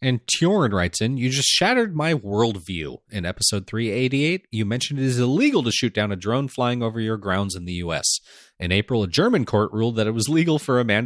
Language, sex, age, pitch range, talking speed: English, male, 30-49, 95-125 Hz, 230 wpm